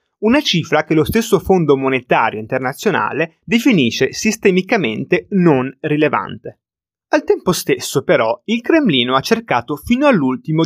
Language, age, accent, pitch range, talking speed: Italian, 30-49, native, 140-210 Hz, 125 wpm